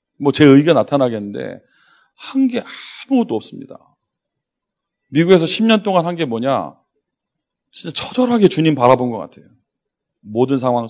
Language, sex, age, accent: Korean, male, 40-59, native